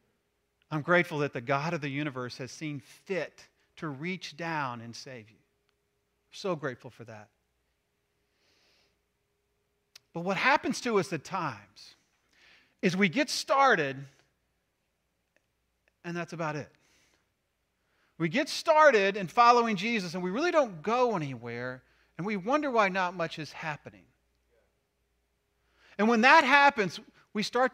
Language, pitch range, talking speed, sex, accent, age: English, 125-205 Hz, 135 wpm, male, American, 40-59